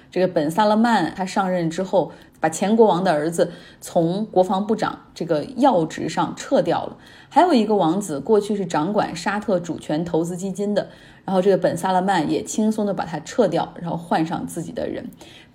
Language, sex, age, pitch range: Chinese, female, 20-39, 175-220 Hz